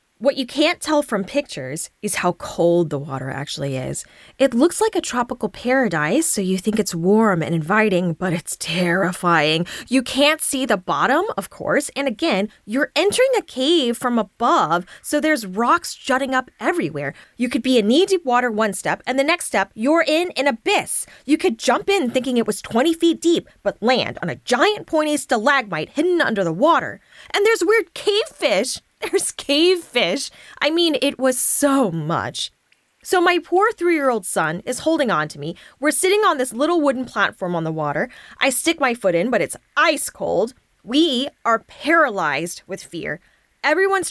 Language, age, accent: English, 10-29, American